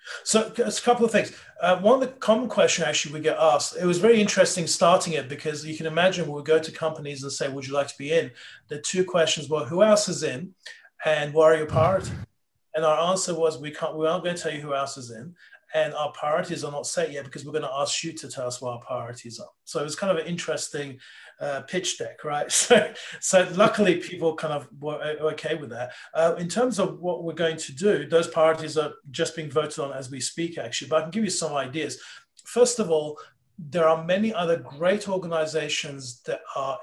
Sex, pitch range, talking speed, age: male, 145-170 Hz, 240 wpm, 40-59